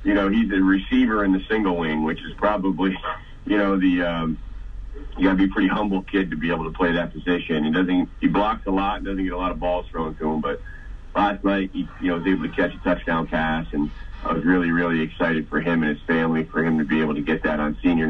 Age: 40-59